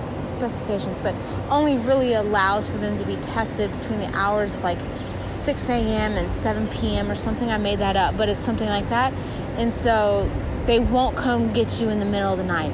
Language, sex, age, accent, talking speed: English, female, 20-39, American, 205 wpm